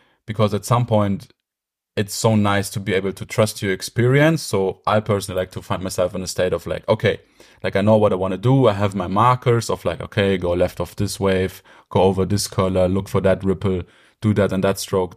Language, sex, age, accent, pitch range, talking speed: English, male, 30-49, German, 95-110 Hz, 235 wpm